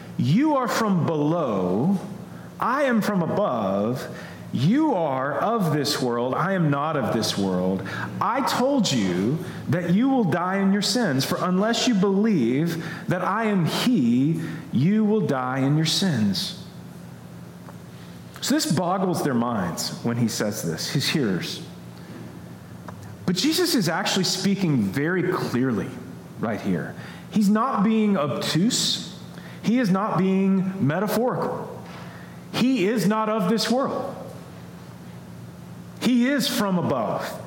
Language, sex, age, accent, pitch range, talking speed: English, male, 40-59, American, 155-215 Hz, 130 wpm